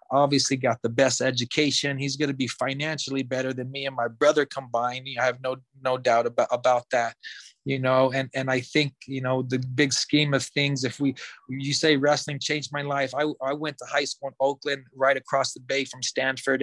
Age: 30-49